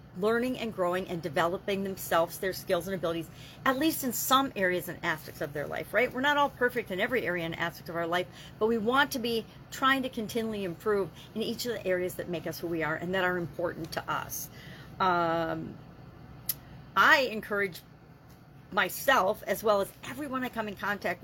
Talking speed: 200 wpm